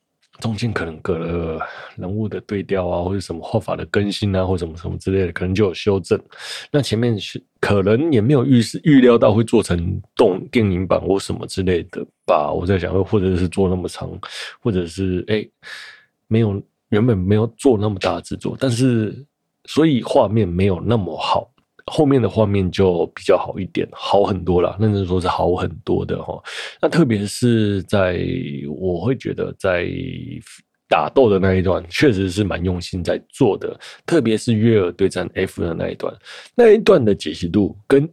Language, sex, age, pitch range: Chinese, male, 20-39, 90-115 Hz